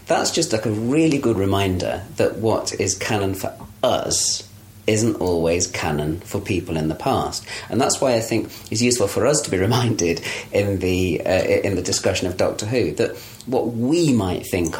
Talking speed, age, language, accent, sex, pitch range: 185 wpm, 40-59, English, British, male, 95-115 Hz